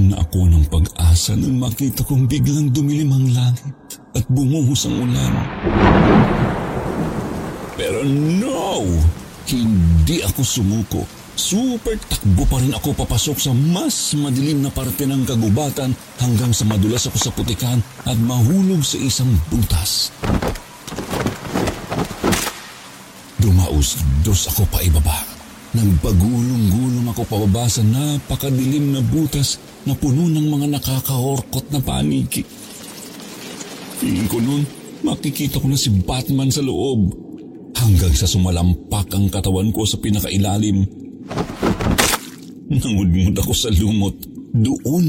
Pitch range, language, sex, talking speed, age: 95-140 Hz, Filipino, male, 115 wpm, 50-69